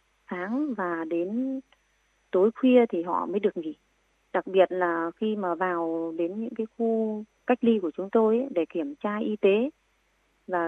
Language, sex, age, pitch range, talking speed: Vietnamese, female, 20-39, 180-240 Hz, 175 wpm